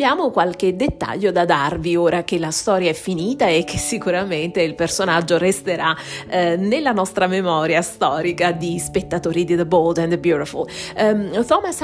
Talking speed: 150 wpm